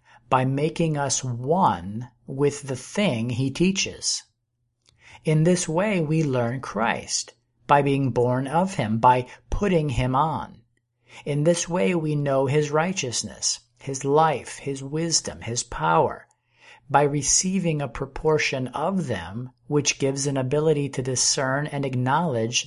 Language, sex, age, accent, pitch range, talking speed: English, male, 50-69, American, 120-155 Hz, 135 wpm